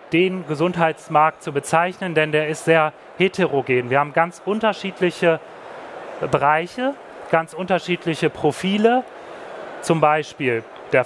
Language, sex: German, male